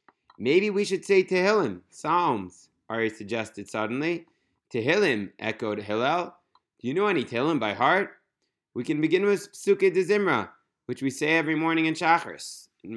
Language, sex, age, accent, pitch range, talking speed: English, male, 30-49, American, 120-165 Hz, 155 wpm